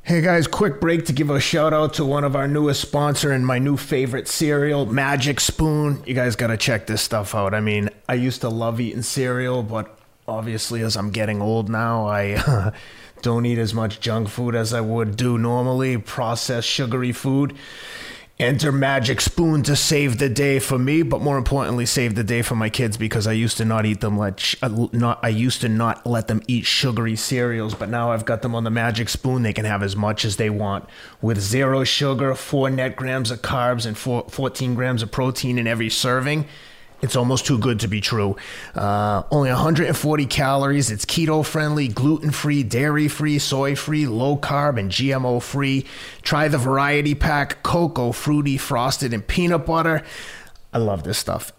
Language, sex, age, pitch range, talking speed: English, male, 30-49, 115-140 Hz, 190 wpm